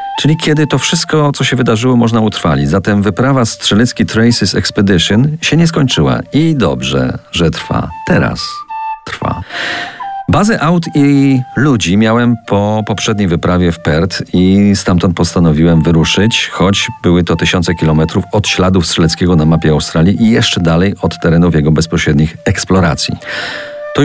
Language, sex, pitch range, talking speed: Polish, male, 80-115 Hz, 140 wpm